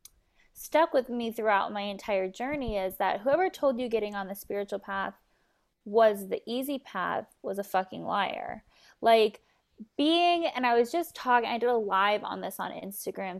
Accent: American